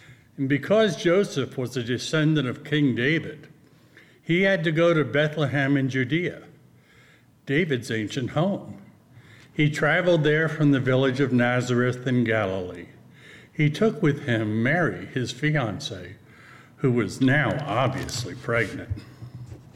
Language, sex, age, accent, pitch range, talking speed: English, male, 60-79, American, 120-150 Hz, 130 wpm